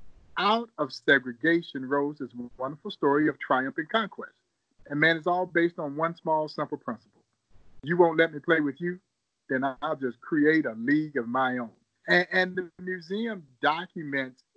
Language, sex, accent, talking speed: English, male, American, 175 wpm